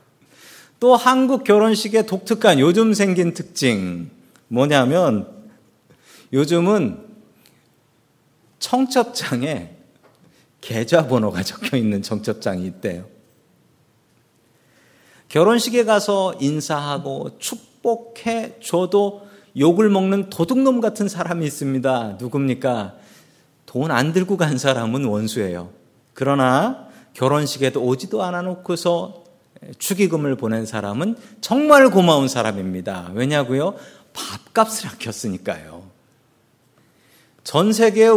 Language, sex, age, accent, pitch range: Korean, male, 40-59, native, 130-210 Hz